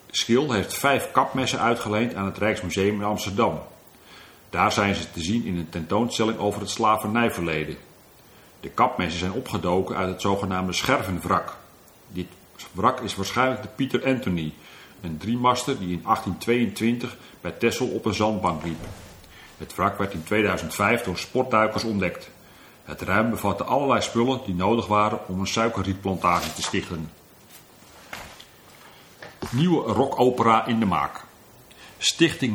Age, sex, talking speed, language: 40-59, male, 135 wpm, Dutch